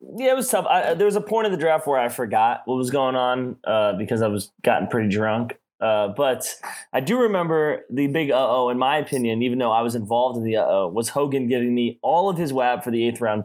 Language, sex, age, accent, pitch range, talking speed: English, male, 20-39, American, 110-135 Hz, 255 wpm